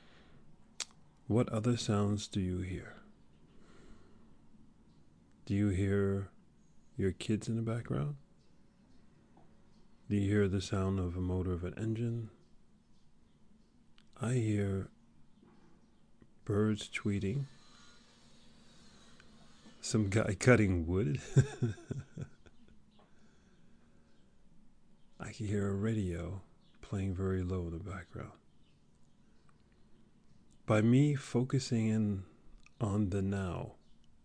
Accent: American